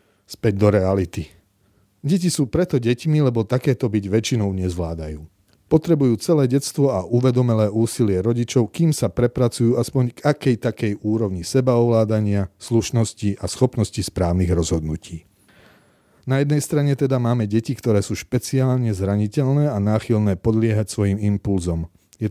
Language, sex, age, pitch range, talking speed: Slovak, male, 40-59, 95-125 Hz, 130 wpm